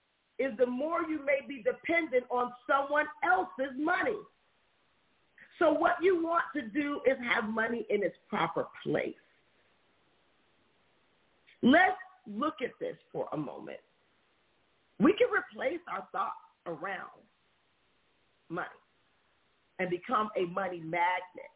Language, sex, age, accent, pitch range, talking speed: English, female, 40-59, American, 220-305 Hz, 120 wpm